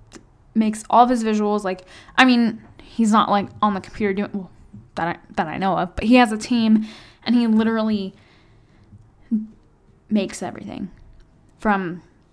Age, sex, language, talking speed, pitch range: 10-29, female, English, 160 wpm, 180-225 Hz